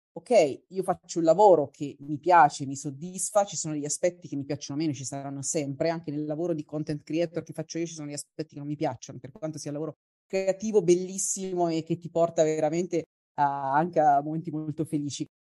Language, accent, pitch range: Italian, native, 155-195 Hz